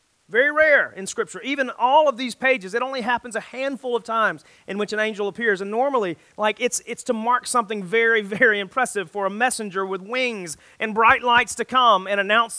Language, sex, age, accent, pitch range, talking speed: English, male, 30-49, American, 195-250 Hz, 210 wpm